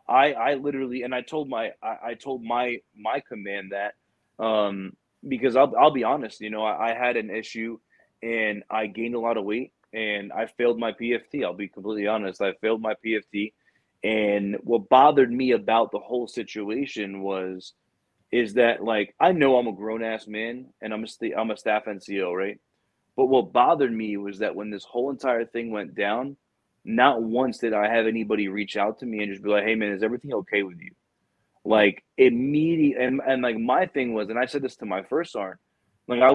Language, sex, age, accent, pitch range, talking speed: English, male, 20-39, American, 105-125 Hz, 210 wpm